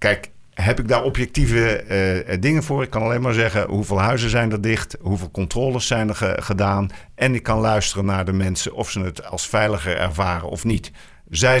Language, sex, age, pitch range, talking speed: Dutch, male, 50-69, 95-130 Hz, 200 wpm